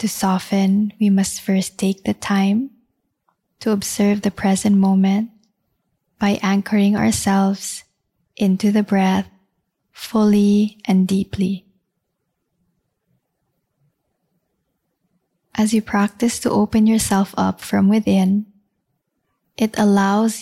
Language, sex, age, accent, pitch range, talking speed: English, female, 20-39, Filipino, 195-210 Hz, 95 wpm